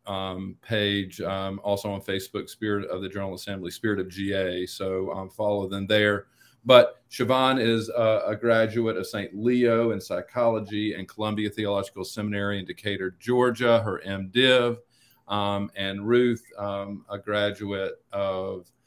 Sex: male